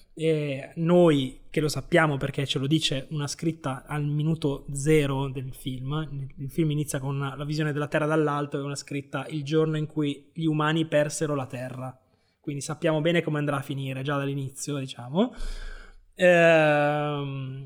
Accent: native